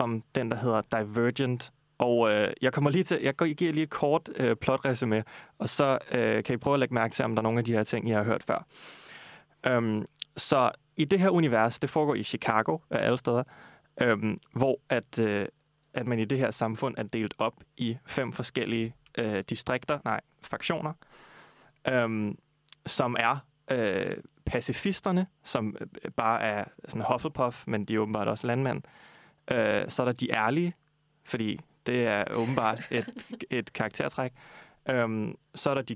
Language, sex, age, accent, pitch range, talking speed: Danish, male, 20-39, native, 110-150 Hz, 175 wpm